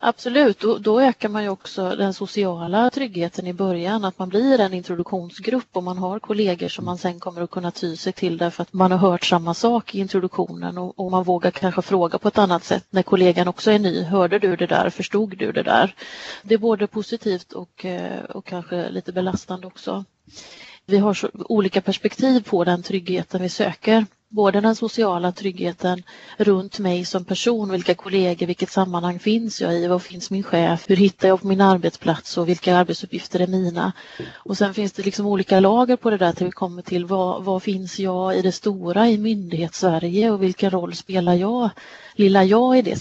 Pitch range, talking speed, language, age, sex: 180-210 Hz, 200 wpm, Swedish, 30-49, female